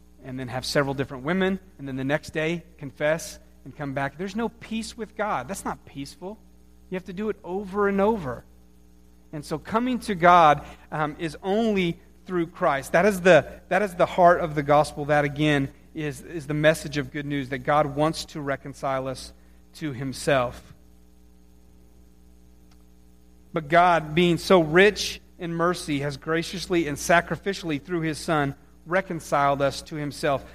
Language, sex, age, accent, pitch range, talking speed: English, male, 40-59, American, 140-185 Hz, 170 wpm